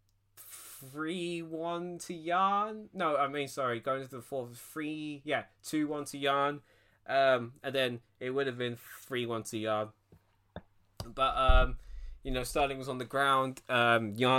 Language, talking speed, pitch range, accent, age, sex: English, 165 wpm, 115-150 Hz, British, 20-39, male